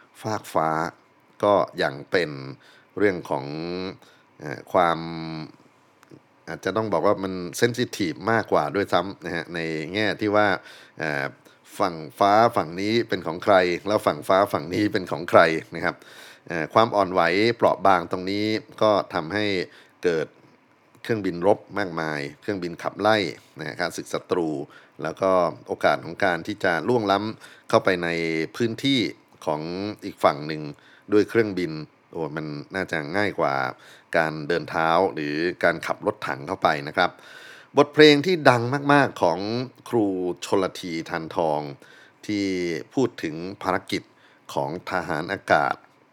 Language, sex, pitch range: Thai, male, 80-105 Hz